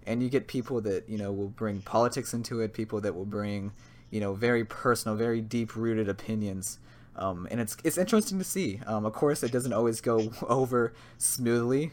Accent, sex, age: American, male, 20-39